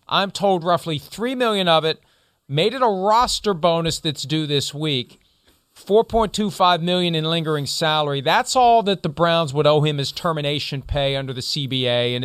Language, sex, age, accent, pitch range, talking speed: English, male, 40-59, American, 145-200 Hz, 175 wpm